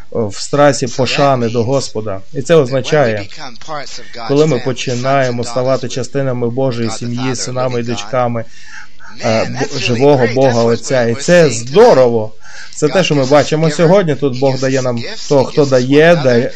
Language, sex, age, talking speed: Ukrainian, male, 20-39, 140 wpm